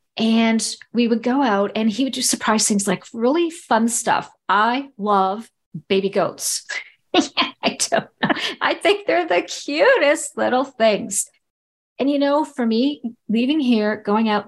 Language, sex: English, female